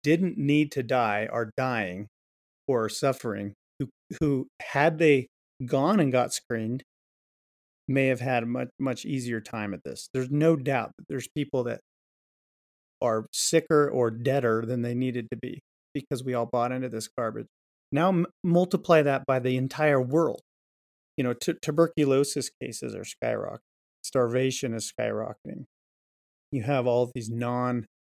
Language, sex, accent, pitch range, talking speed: English, male, American, 120-145 Hz, 155 wpm